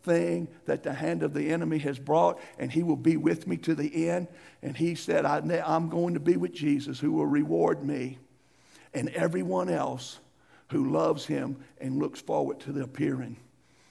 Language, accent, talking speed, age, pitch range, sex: English, American, 185 wpm, 60-79, 125-170 Hz, male